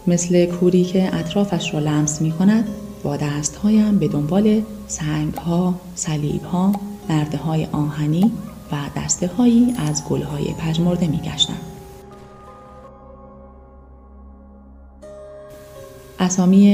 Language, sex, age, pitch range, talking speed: Persian, female, 30-49, 140-190 Hz, 95 wpm